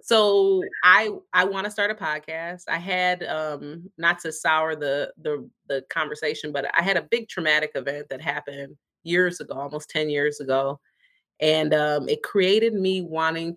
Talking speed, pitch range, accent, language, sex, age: 175 wpm, 145-175 Hz, American, English, female, 30-49